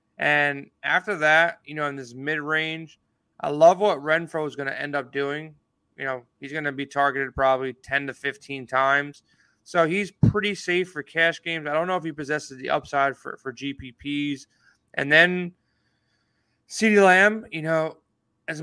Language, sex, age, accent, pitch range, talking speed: English, male, 20-39, American, 135-160 Hz, 175 wpm